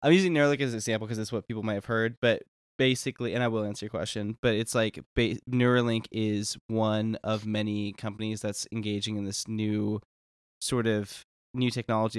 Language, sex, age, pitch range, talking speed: English, male, 10-29, 105-115 Hz, 195 wpm